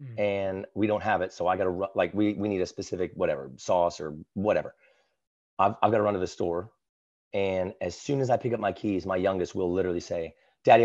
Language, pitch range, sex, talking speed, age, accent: English, 95-115 Hz, male, 230 wpm, 30-49, American